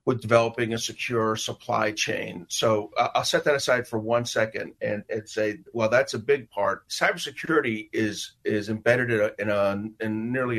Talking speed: 175 wpm